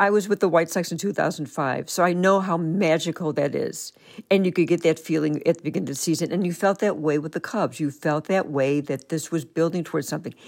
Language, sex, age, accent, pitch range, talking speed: English, female, 60-79, American, 165-205 Hz, 260 wpm